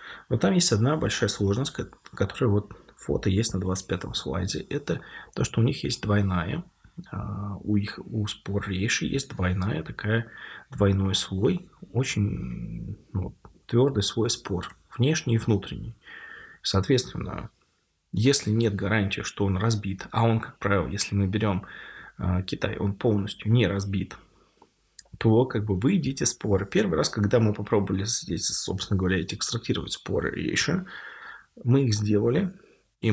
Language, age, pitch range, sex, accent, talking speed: Russian, 20-39, 100-115 Hz, male, native, 140 wpm